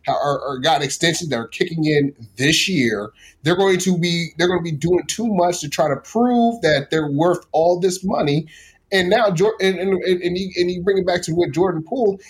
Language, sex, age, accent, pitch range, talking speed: English, male, 30-49, American, 140-190 Hz, 210 wpm